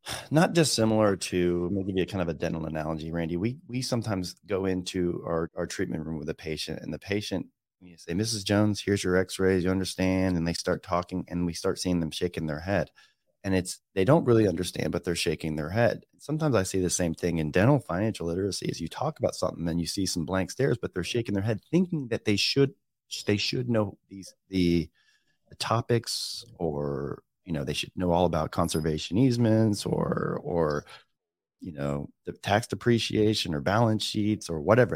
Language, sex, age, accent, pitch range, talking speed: English, male, 30-49, American, 85-115 Hz, 205 wpm